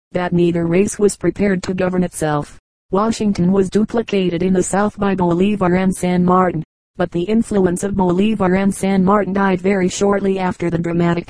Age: 40-59